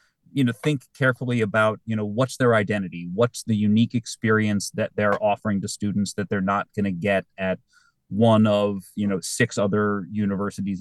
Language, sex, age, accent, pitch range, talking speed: English, male, 30-49, American, 100-120 Hz, 185 wpm